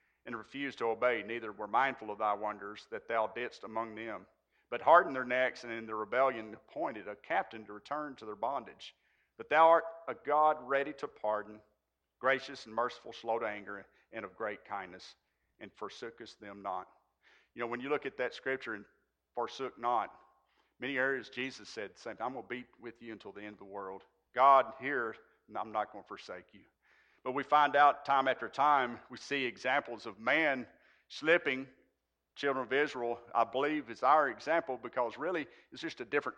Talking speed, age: 195 wpm, 50-69